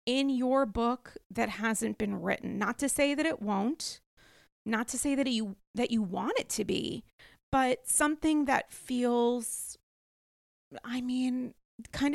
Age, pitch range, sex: 30-49, 220-255 Hz, female